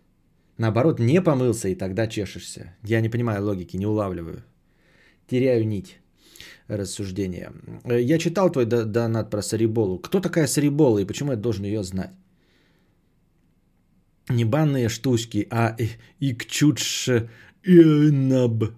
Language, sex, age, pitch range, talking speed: Bulgarian, male, 20-39, 110-135 Hz, 120 wpm